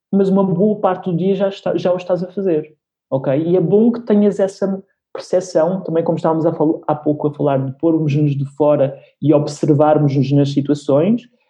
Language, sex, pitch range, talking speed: Portuguese, male, 145-180 Hz, 190 wpm